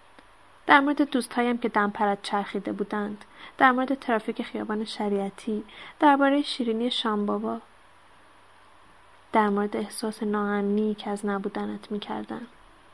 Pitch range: 210-235 Hz